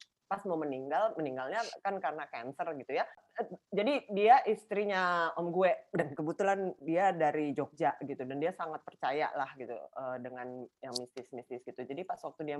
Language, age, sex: Indonesian, 30-49, female